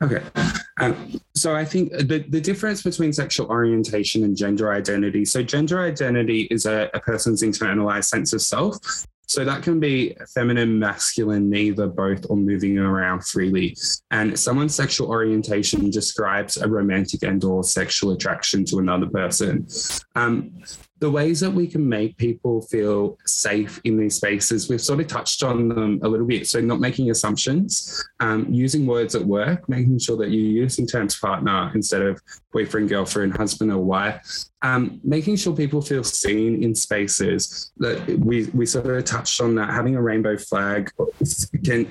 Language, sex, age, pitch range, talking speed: English, male, 20-39, 100-130 Hz, 165 wpm